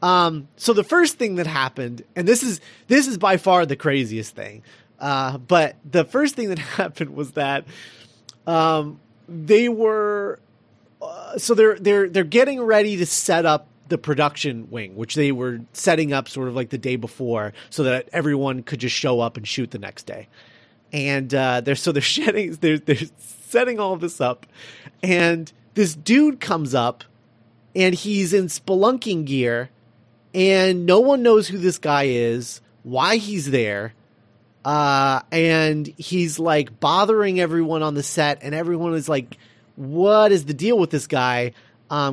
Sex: male